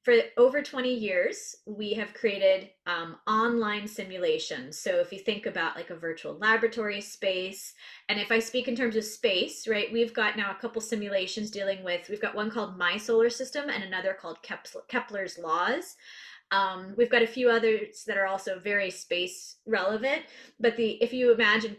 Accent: American